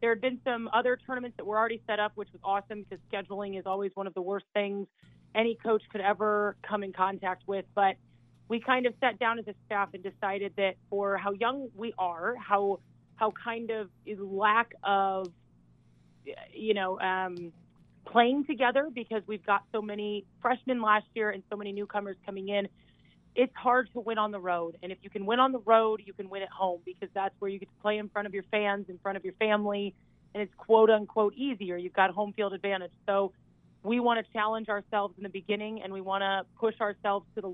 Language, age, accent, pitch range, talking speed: English, 30-49, American, 195-215 Hz, 220 wpm